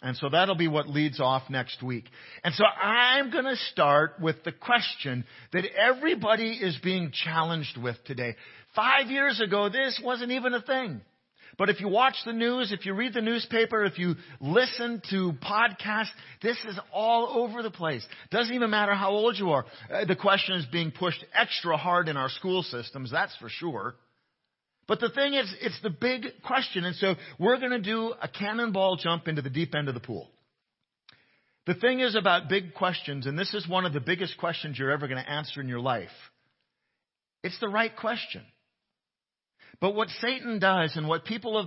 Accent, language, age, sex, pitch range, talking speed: American, English, 50-69, male, 160-225 Hz, 195 wpm